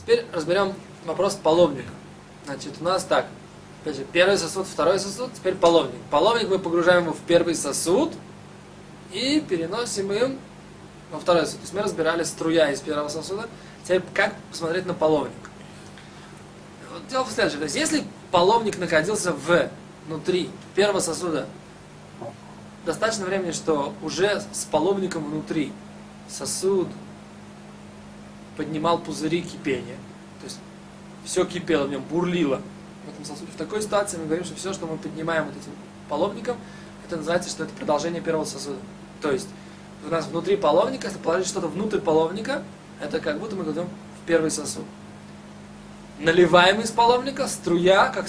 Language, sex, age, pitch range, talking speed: Russian, male, 20-39, 160-195 Hz, 150 wpm